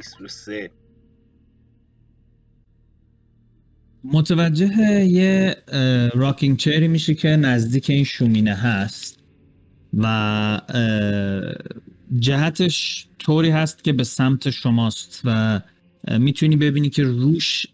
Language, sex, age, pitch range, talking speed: Persian, male, 30-49, 115-145 Hz, 80 wpm